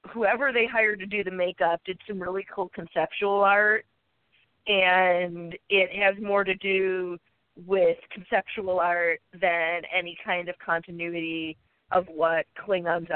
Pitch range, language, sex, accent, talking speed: 170-195 Hz, English, female, American, 135 wpm